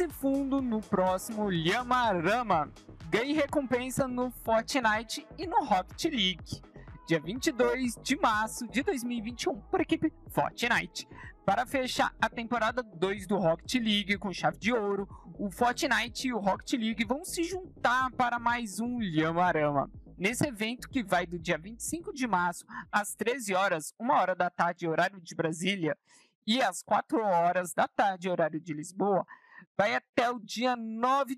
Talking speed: 150 wpm